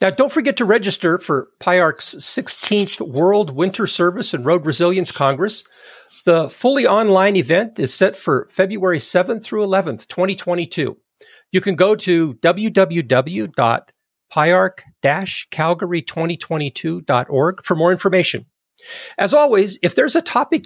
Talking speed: 120 wpm